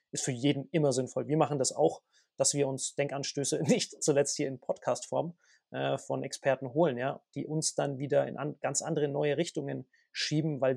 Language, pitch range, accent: German, 135-165 Hz, German